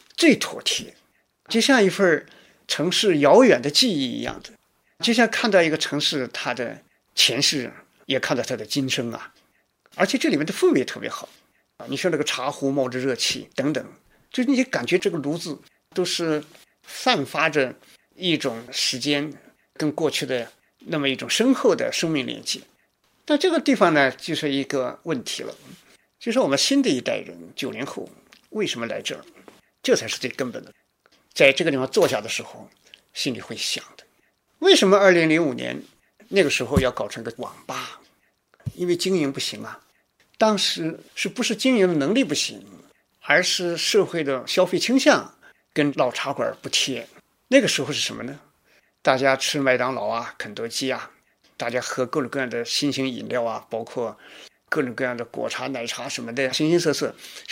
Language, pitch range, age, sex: Chinese, 135-220 Hz, 50-69, male